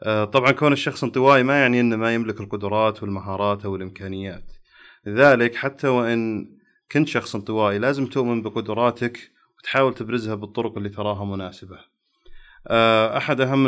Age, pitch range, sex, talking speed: 30-49, 105-120 Hz, male, 130 wpm